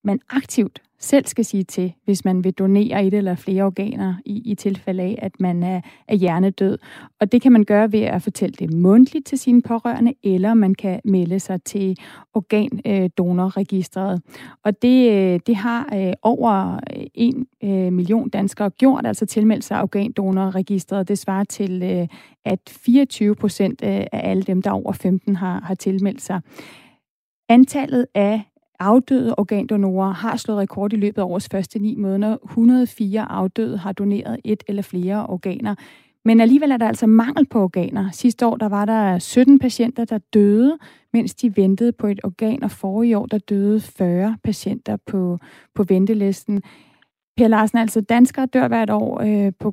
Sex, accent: female, native